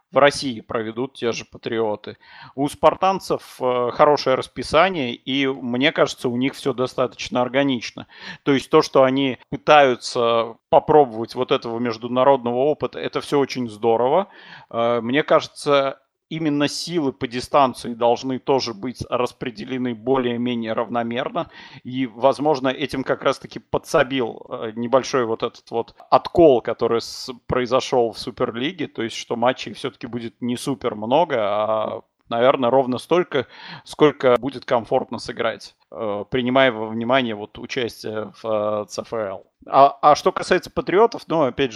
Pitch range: 115-140 Hz